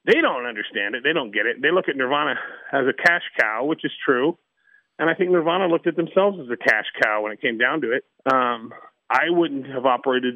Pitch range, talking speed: 125-165 Hz, 240 wpm